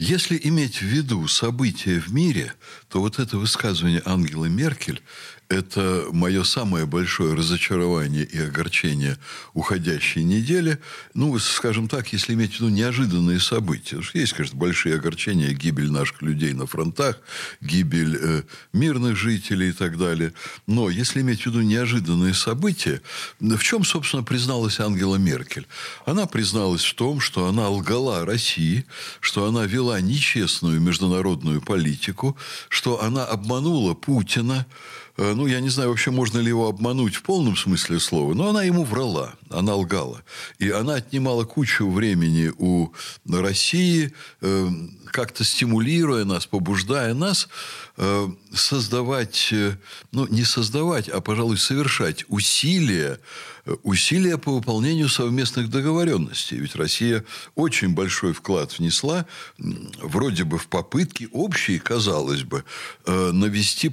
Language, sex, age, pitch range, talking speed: Russian, male, 60-79, 90-130 Hz, 130 wpm